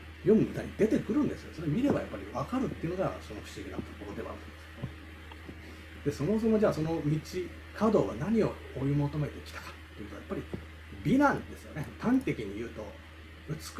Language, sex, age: Japanese, male, 40-59